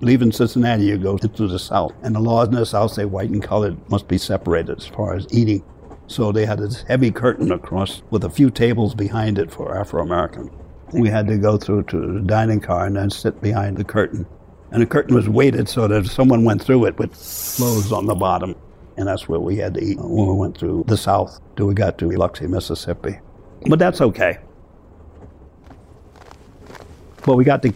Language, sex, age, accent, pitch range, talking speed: English, male, 60-79, American, 95-115 Hz, 215 wpm